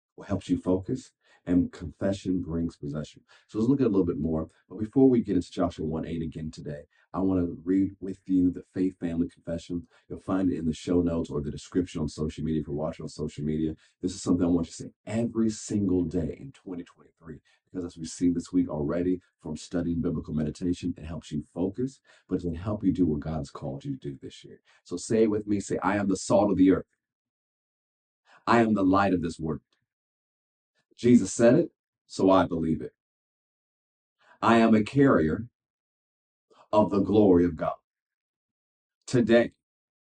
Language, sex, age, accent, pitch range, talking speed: English, male, 40-59, American, 80-115 Hz, 200 wpm